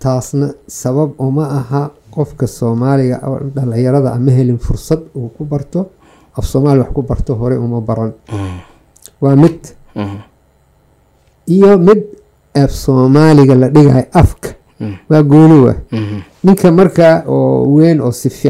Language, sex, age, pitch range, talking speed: Finnish, male, 50-69, 120-155 Hz, 55 wpm